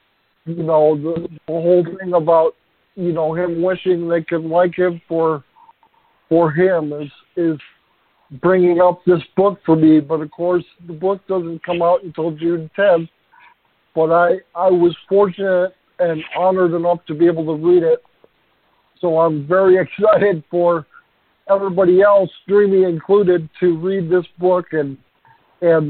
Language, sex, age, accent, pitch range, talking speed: English, male, 50-69, American, 165-195 Hz, 155 wpm